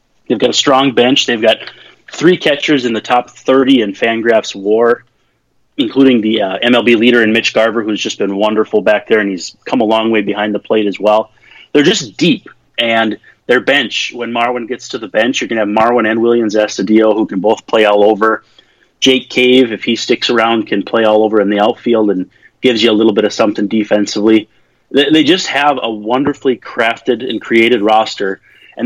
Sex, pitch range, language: male, 110-130 Hz, English